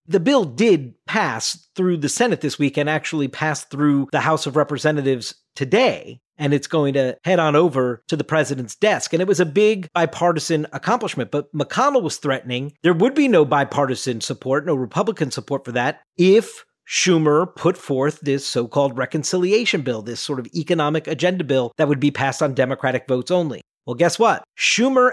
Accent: American